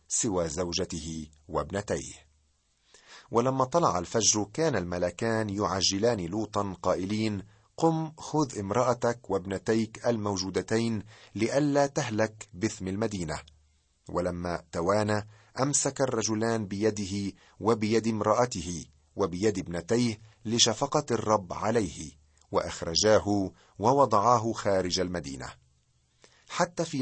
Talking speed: 85 wpm